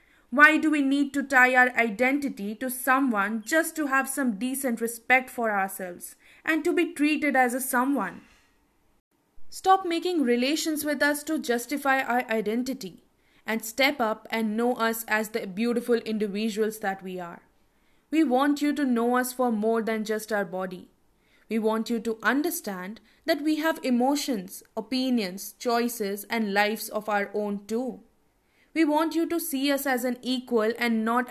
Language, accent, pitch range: English, Indian, 210-260 Hz